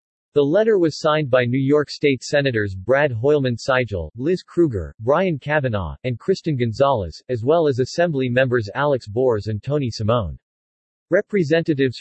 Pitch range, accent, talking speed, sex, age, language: 120-150 Hz, American, 145 wpm, male, 40-59, English